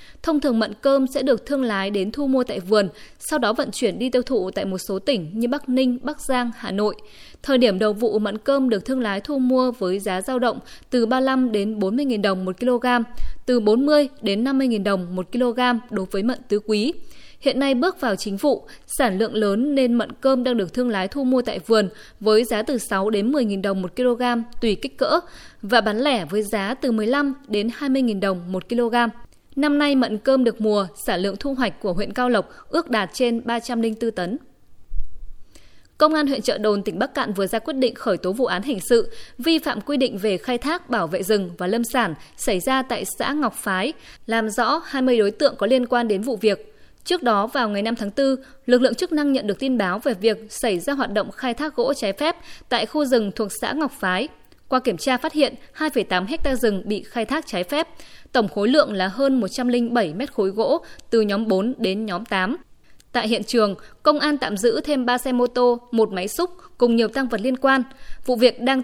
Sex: female